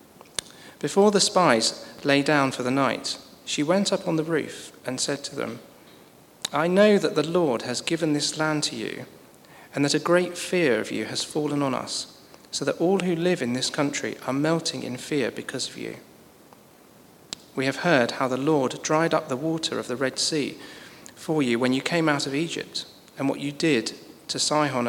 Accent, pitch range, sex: British, 130-160 Hz, male